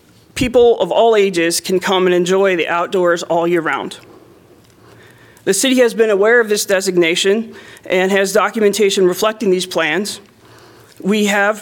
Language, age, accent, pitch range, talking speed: English, 40-59, American, 175-215 Hz, 150 wpm